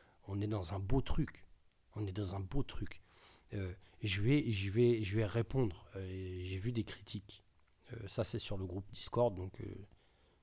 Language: French